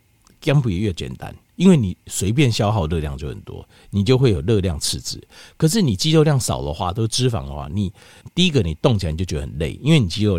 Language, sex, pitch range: Chinese, male, 85-140 Hz